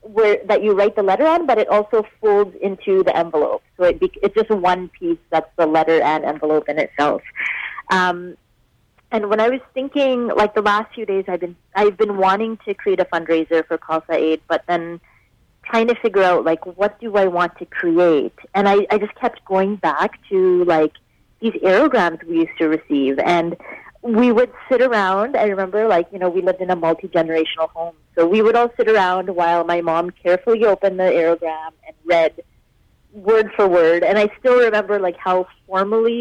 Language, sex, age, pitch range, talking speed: English, female, 30-49, 170-220 Hz, 200 wpm